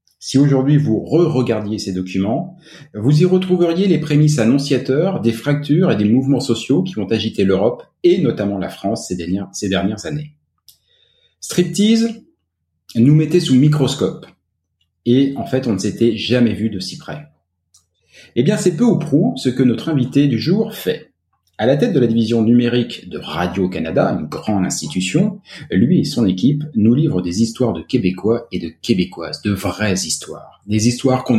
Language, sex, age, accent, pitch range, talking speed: French, male, 40-59, French, 100-145 Hz, 170 wpm